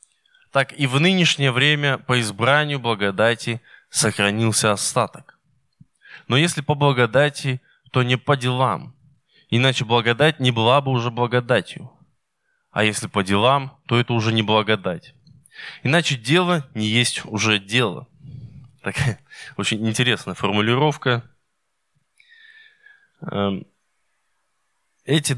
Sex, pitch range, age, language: male, 115-145 Hz, 20-39, Russian